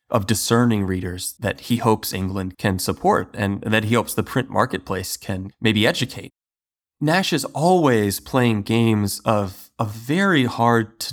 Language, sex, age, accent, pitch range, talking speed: English, male, 30-49, American, 100-125 Hz, 155 wpm